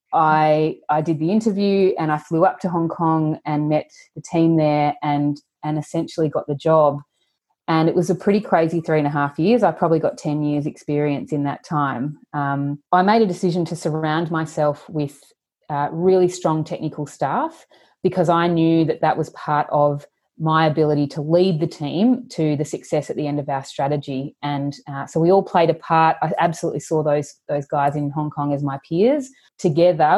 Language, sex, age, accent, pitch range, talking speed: English, female, 30-49, Australian, 145-170 Hz, 200 wpm